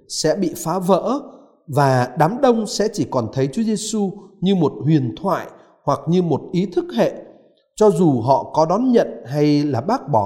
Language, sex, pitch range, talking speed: Vietnamese, male, 140-210 Hz, 195 wpm